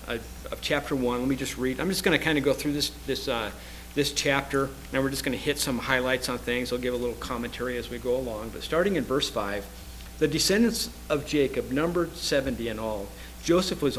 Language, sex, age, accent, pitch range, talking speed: English, male, 50-69, American, 115-150 Hz, 230 wpm